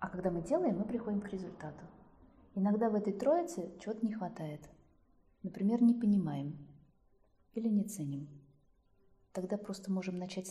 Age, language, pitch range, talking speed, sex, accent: 20-39, Russian, 150-200 Hz, 145 wpm, female, native